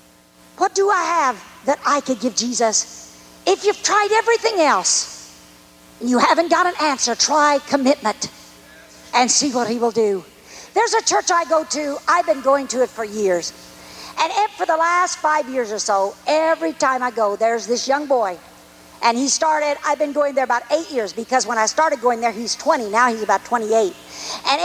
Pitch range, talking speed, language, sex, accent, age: 245-375 Hz, 195 wpm, English, female, American, 50-69